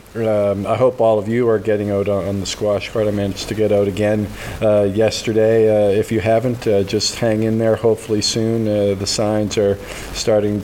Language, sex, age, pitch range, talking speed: English, male, 40-59, 100-115 Hz, 210 wpm